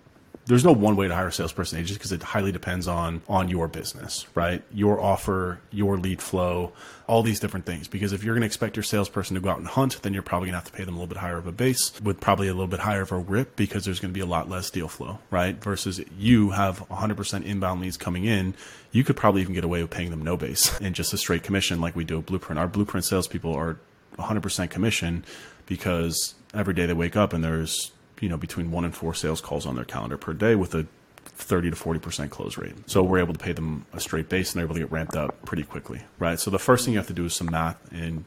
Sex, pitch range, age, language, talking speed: male, 85-100 Hz, 30-49, English, 270 wpm